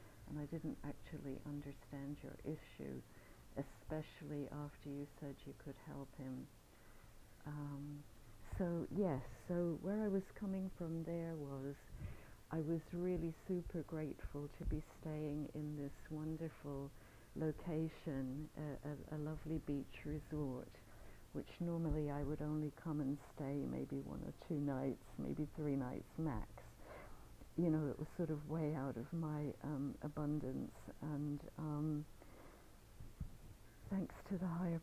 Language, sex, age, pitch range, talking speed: English, female, 60-79, 140-165 Hz, 135 wpm